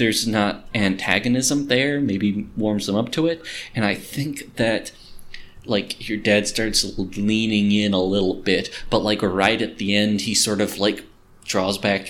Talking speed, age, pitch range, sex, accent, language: 175 wpm, 30-49, 95-125 Hz, male, American, English